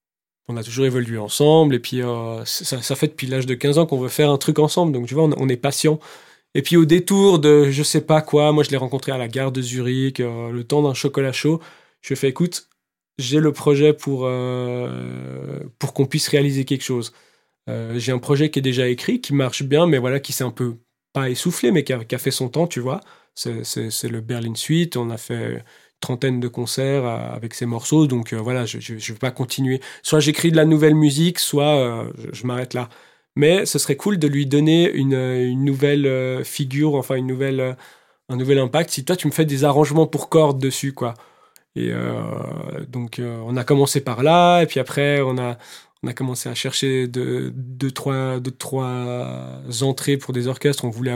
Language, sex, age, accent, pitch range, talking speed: French, male, 20-39, French, 125-145 Hz, 225 wpm